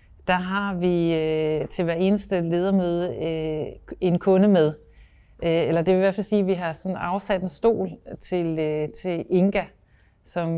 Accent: native